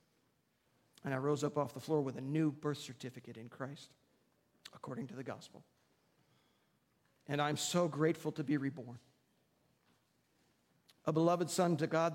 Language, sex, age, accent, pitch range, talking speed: English, male, 50-69, American, 135-170 Hz, 150 wpm